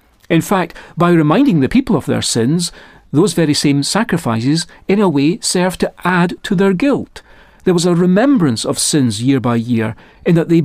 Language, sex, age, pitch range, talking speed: English, male, 40-59, 130-180 Hz, 190 wpm